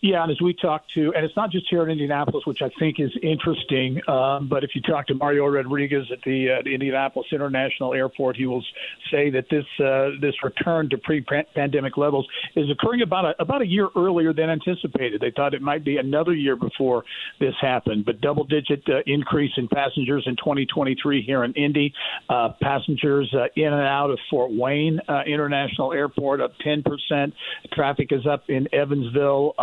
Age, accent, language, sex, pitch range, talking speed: 50-69, American, English, male, 130-150 Hz, 190 wpm